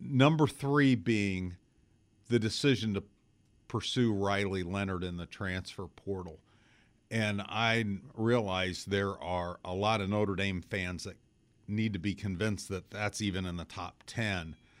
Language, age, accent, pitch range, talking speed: English, 50-69, American, 95-110 Hz, 145 wpm